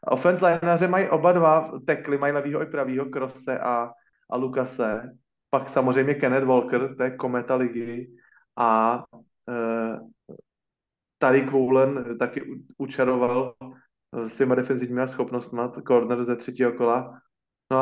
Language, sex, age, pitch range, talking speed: Slovak, male, 30-49, 125-150 Hz, 130 wpm